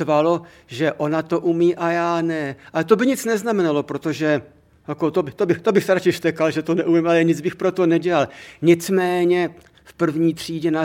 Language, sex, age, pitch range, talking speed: Czech, male, 60-79, 140-170 Hz, 210 wpm